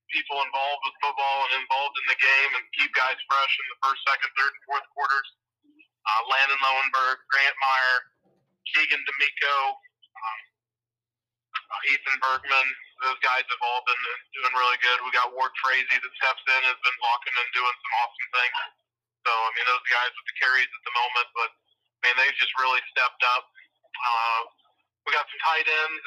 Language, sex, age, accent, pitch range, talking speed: English, male, 40-59, American, 125-145 Hz, 185 wpm